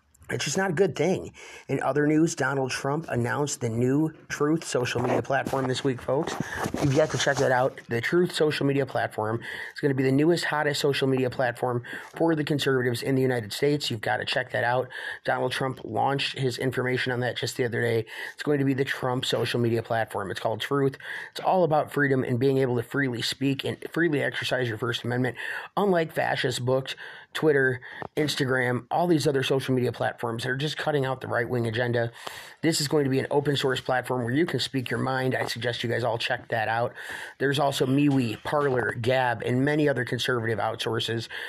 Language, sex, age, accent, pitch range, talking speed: English, male, 30-49, American, 120-140 Hz, 215 wpm